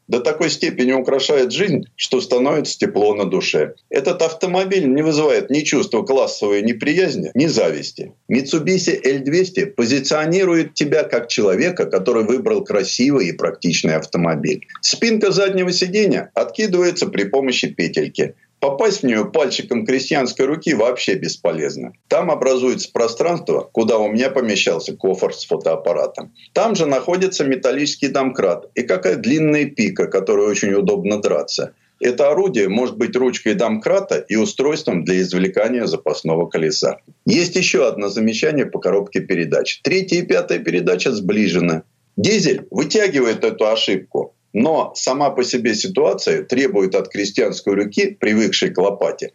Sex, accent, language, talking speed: male, native, Russian, 135 wpm